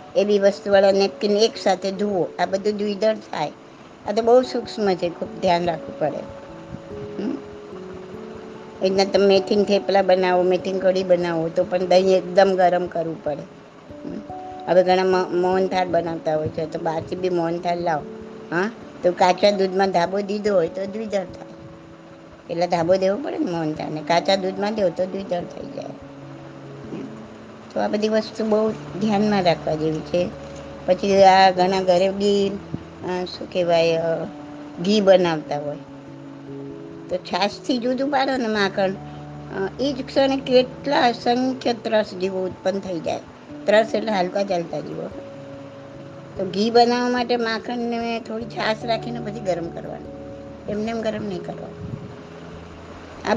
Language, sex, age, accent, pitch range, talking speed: Gujarati, male, 60-79, American, 165-205 Hz, 125 wpm